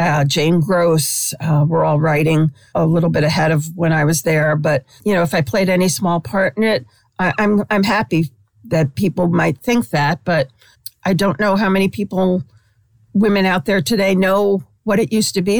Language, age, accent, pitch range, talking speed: English, 50-69, American, 150-185 Hz, 200 wpm